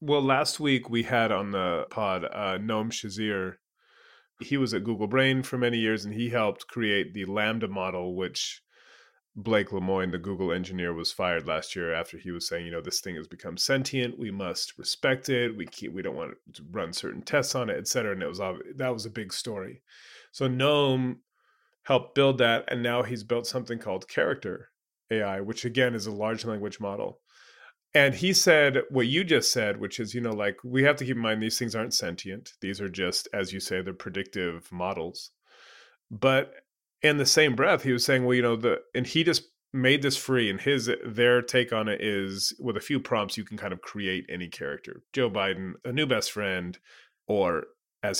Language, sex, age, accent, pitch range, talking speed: English, male, 30-49, American, 100-130 Hz, 205 wpm